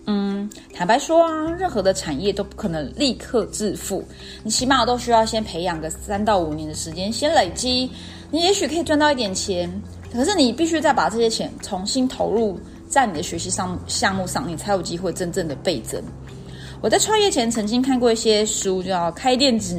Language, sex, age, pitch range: Chinese, female, 30-49, 185-265 Hz